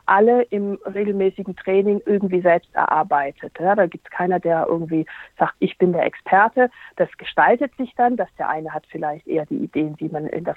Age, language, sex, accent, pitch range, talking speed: 50-69, German, female, German, 175-215 Hz, 195 wpm